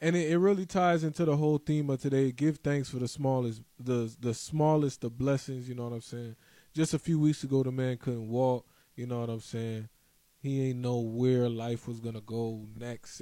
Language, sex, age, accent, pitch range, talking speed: English, male, 20-39, American, 120-155 Hz, 225 wpm